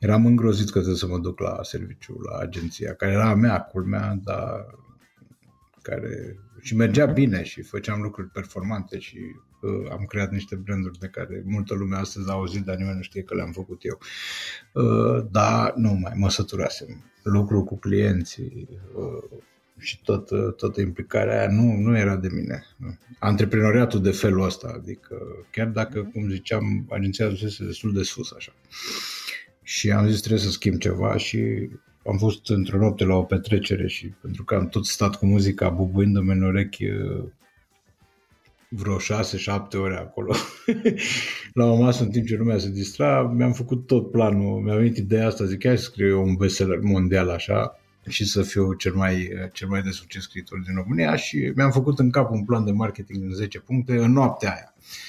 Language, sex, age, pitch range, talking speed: Romanian, male, 50-69, 95-115 Hz, 180 wpm